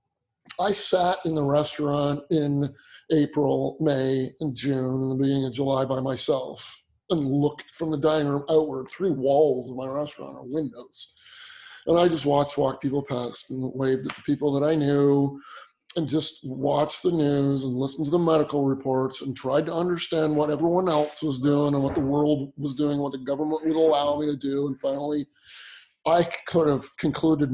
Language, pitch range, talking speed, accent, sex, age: English, 140-165 Hz, 185 wpm, American, male, 30-49